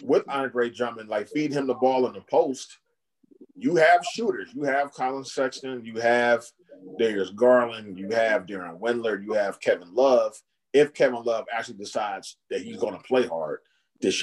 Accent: American